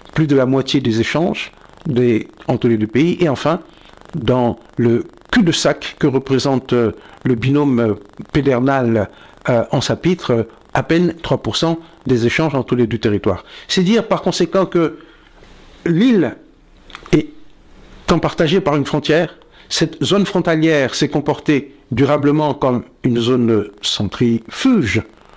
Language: French